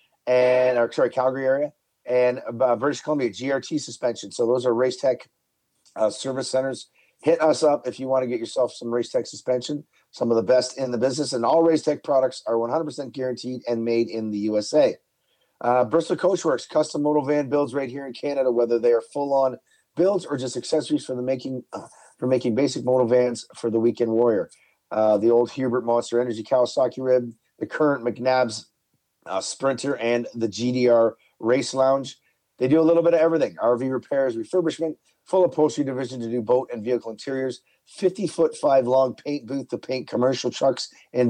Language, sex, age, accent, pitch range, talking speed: English, male, 40-59, American, 120-150 Hz, 180 wpm